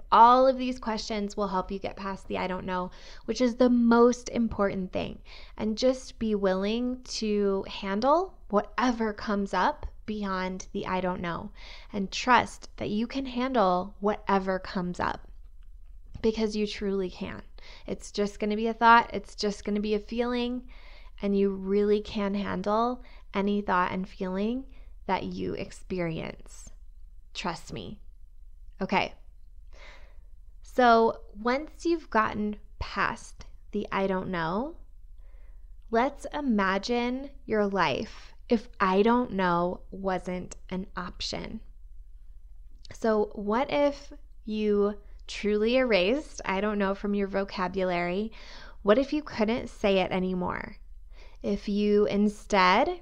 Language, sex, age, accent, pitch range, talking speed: English, female, 20-39, American, 185-230 Hz, 130 wpm